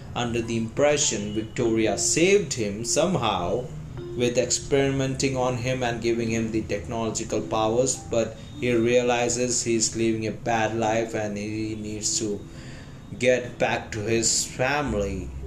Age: 20-39